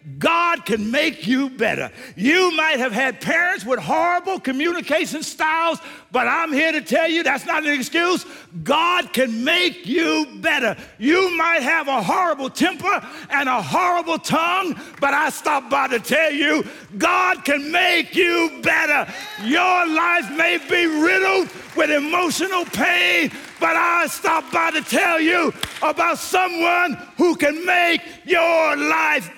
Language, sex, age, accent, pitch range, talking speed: English, male, 50-69, American, 285-345 Hz, 150 wpm